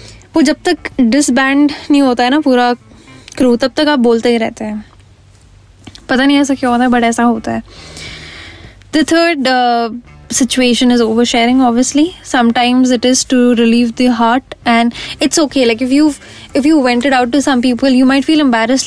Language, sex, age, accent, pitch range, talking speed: English, female, 10-29, Indian, 230-270 Hz, 130 wpm